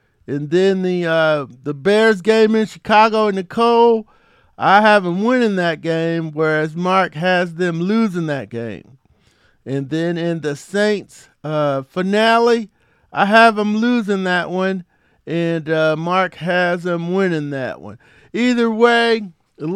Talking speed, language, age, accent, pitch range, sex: 145 wpm, English, 50-69, American, 170-210 Hz, male